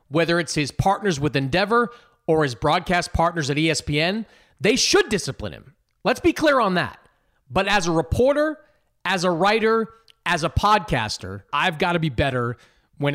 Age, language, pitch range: 30-49, English, 130-180 Hz